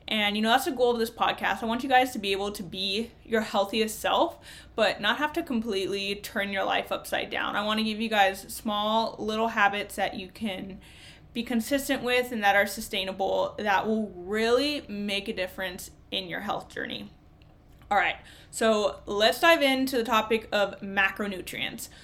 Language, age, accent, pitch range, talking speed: English, 20-39, American, 200-240 Hz, 190 wpm